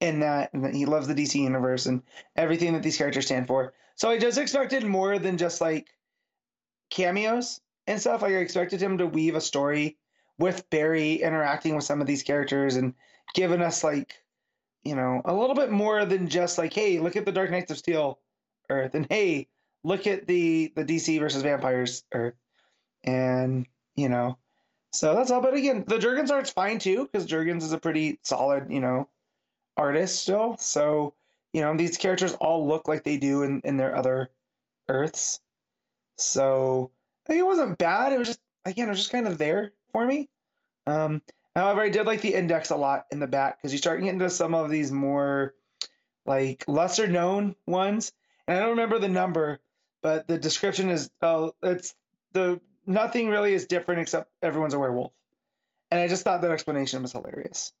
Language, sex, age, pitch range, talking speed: English, male, 20-39, 140-195 Hz, 195 wpm